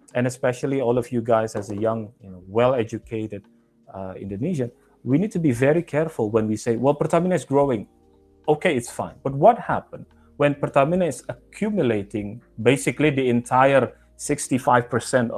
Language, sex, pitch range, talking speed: English, male, 105-140 Hz, 150 wpm